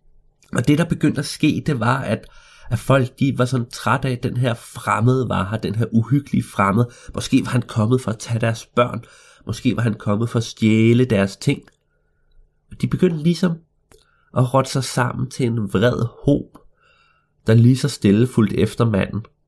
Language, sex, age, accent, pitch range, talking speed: Danish, male, 30-49, native, 105-135 Hz, 190 wpm